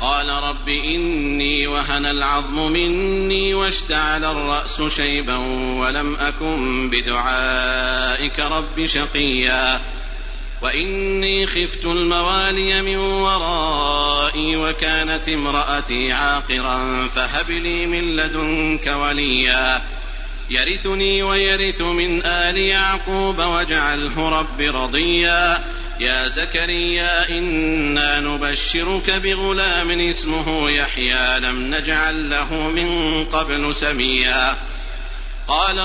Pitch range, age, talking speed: 145-190 Hz, 50-69, 80 wpm